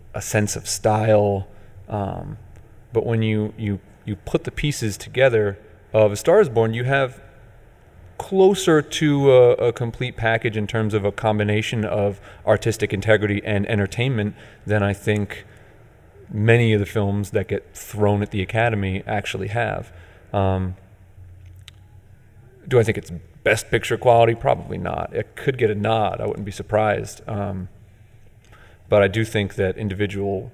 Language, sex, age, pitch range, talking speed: English, male, 30-49, 100-115 Hz, 155 wpm